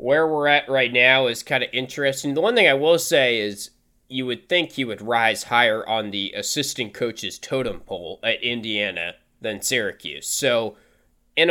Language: English